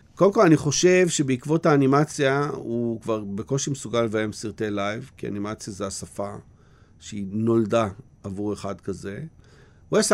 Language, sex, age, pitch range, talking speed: Hebrew, male, 50-69, 110-145 Hz, 135 wpm